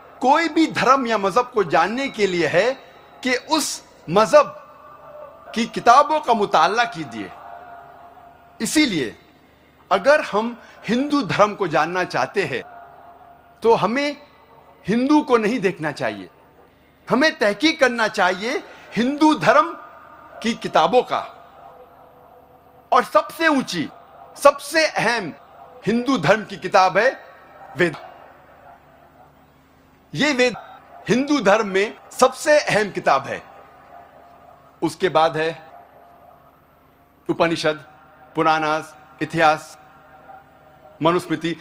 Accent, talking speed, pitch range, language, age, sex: native, 100 wpm, 180-280 Hz, Hindi, 50-69, male